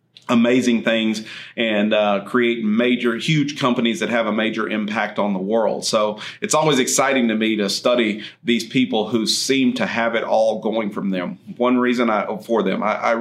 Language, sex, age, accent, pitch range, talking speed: English, male, 40-59, American, 100-125 Hz, 190 wpm